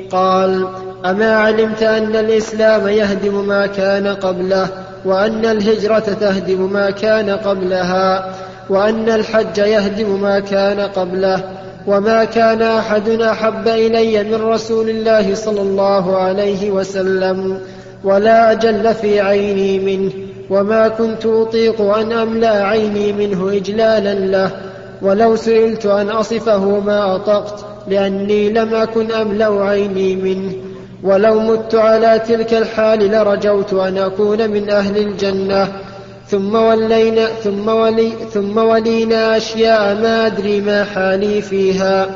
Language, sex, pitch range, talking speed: Arabic, male, 195-220 Hz, 115 wpm